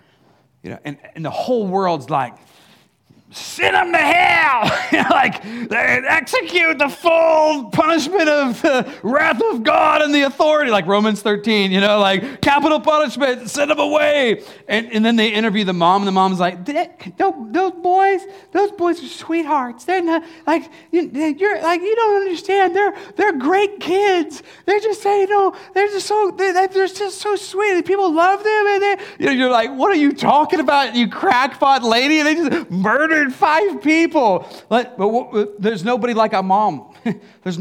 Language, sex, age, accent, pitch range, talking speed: English, male, 30-49, American, 205-320 Hz, 175 wpm